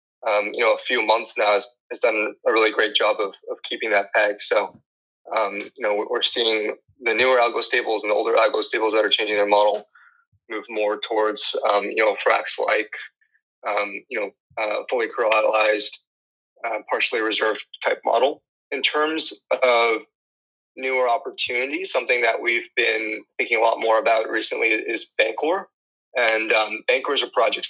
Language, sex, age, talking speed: English, male, 20-39, 175 wpm